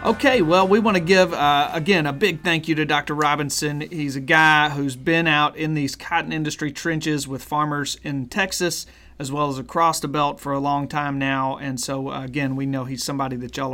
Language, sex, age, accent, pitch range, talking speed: English, male, 30-49, American, 145-185 Hz, 225 wpm